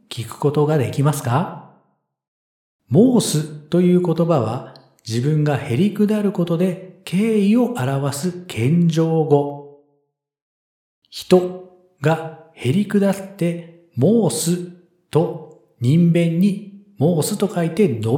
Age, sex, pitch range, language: 40-59, male, 125-190 Hz, Japanese